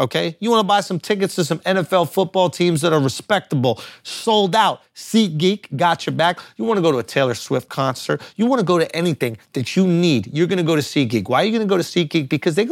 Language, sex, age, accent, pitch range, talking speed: English, male, 30-49, American, 135-205 Hz, 260 wpm